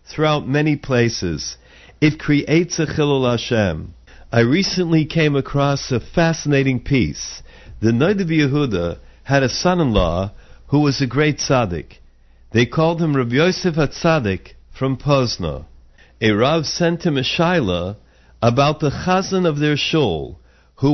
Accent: American